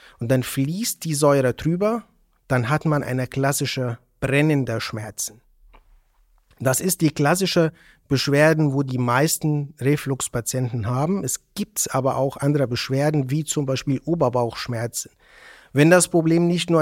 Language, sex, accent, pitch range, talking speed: German, male, German, 130-165 Hz, 135 wpm